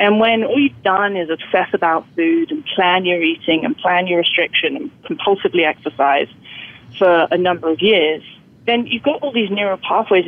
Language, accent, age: English, British, 30-49